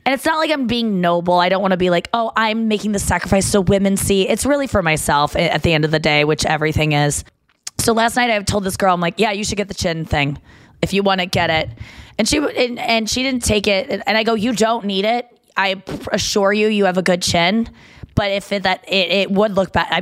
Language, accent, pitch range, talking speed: English, American, 170-205 Hz, 265 wpm